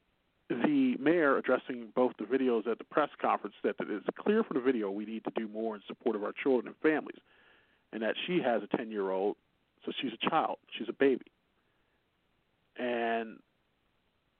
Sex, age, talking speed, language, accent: male, 40-59, 190 wpm, English, American